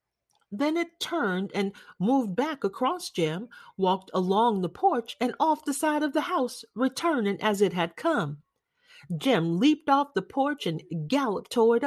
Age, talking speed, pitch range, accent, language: 40-59, 160 wpm, 185-310 Hz, American, English